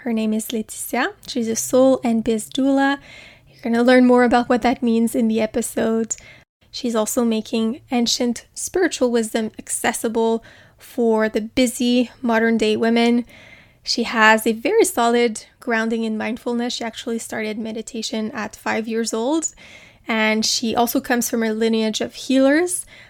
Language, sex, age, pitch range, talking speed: English, female, 20-39, 225-245 Hz, 155 wpm